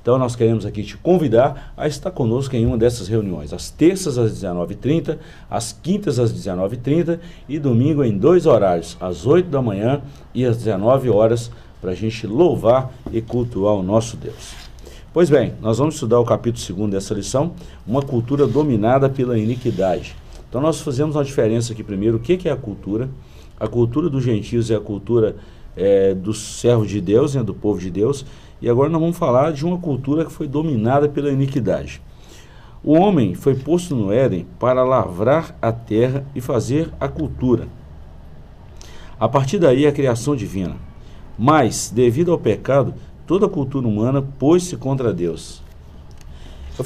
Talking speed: 170 wpm